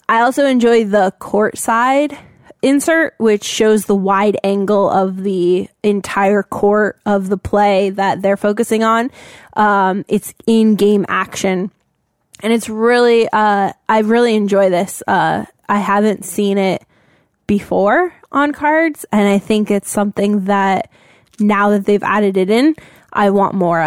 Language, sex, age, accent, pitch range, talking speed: English, female, 10-29, American, 200-225 Hz, 150 wpm